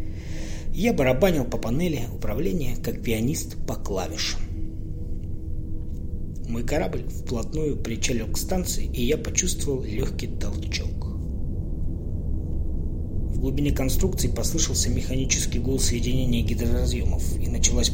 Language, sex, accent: Russian, male, native